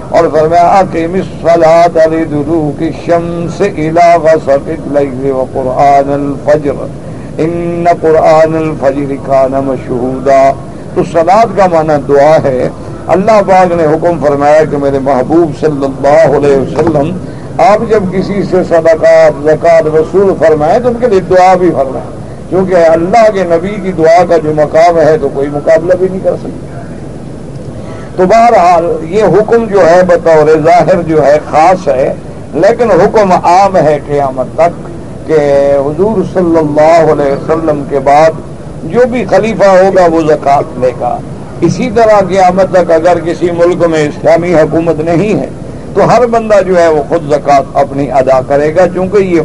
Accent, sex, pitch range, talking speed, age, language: Indian, male, 145-180 Hz, 120 wpm, 50-69, English